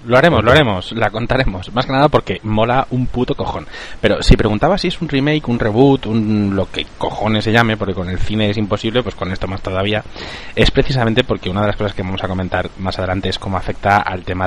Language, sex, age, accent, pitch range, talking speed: Spanish, male, 20-39, Spanish, 95-120 Hz, 240 wpm